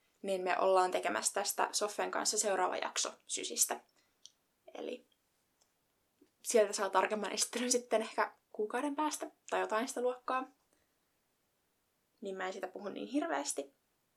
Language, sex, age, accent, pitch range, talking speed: Finnish, female, 20-39, native, 200-250 Hz, 125 wpm